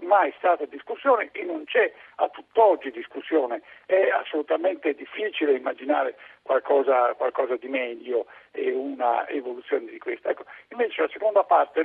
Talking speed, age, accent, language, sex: 135 wpm, 60-79, native, Italian, male